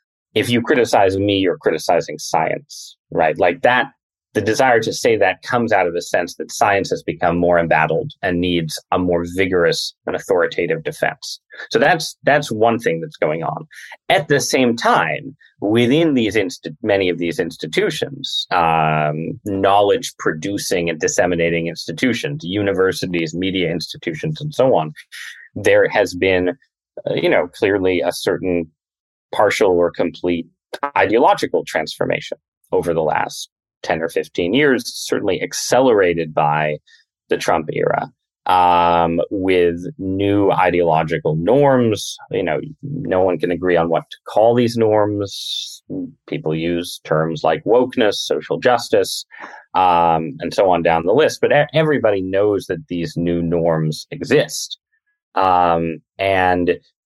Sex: male